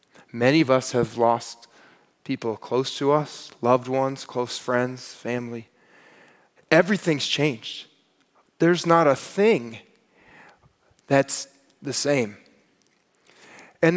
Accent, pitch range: American, 135-200 Hz